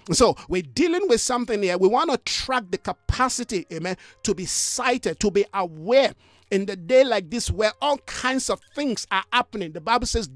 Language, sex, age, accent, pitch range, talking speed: English, male, 50-69, Nigerian, 190-255 Hz, 195 wpm